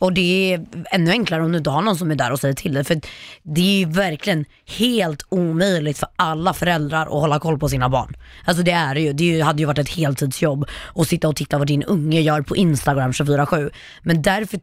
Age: 20-39